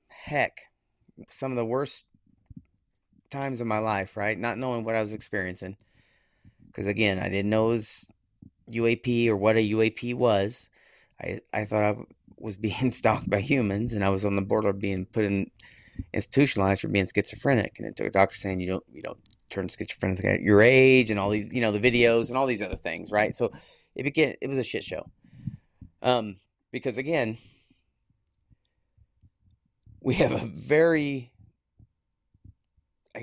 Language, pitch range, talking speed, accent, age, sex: English, 100-120 Hz, 175 wpm, American, 30-49, male